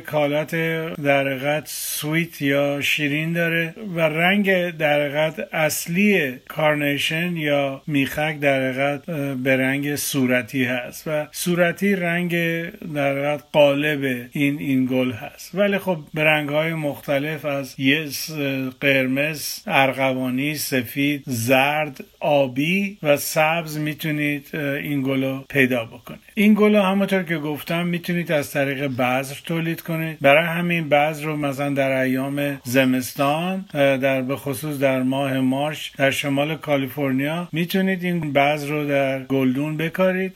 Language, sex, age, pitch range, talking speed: Persian, male, 50-69, 135-155 Hz, 120 wpm